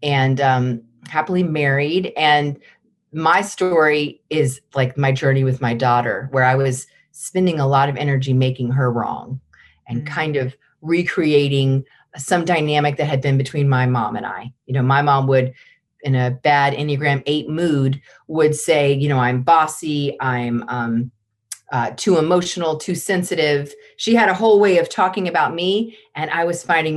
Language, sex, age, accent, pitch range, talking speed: English, female, 40-59, American, 130-155 Hz, 170 wpm